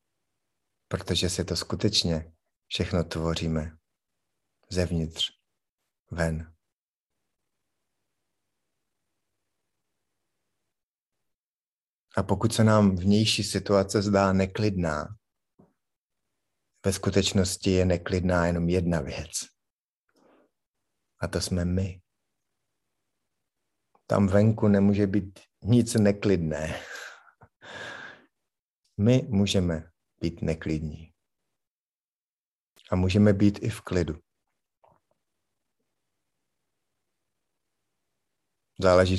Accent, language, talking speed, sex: native, Czech, 65 wpm, male